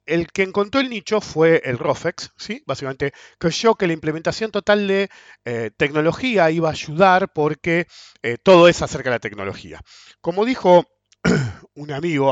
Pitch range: 130-180 Hz